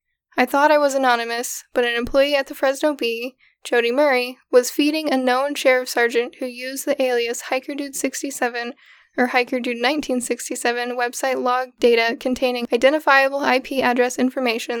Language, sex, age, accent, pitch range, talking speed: English, female, 10-29, American, 245-280 Hz, 140 wpm